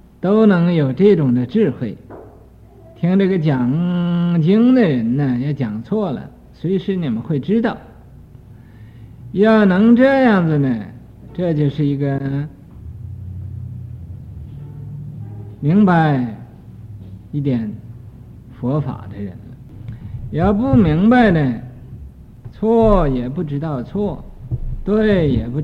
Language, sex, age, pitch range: Chinese, male, 50-69, 105-180 Hz